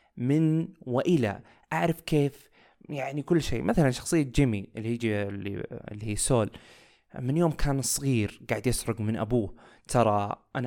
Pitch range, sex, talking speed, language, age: 110-145 Hz, male, 135 wpm, Arabic, 20-39